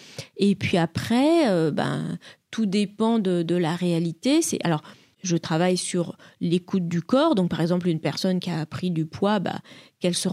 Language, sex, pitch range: French, female, 170-200 Hz